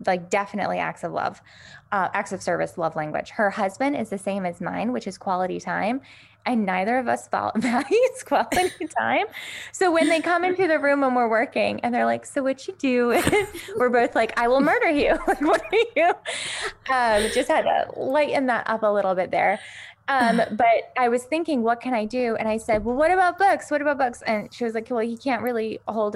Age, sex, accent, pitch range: 10-29, female, American, 195-245 Hz